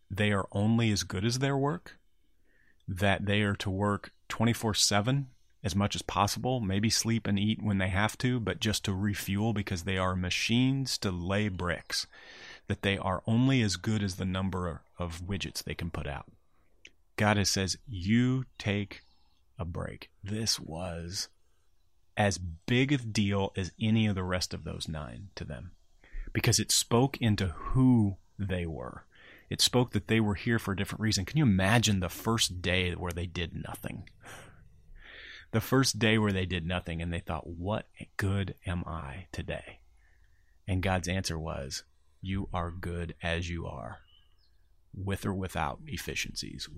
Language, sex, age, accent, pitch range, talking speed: English, male, 30-49, American, 85-105 Hz, 170 wpm